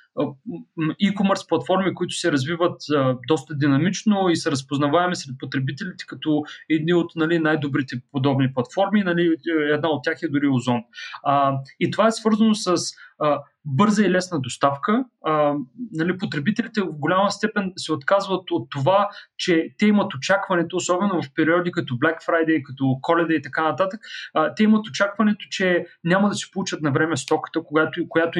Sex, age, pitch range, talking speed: male, 30-49, 150-190 Hz, 155 wpm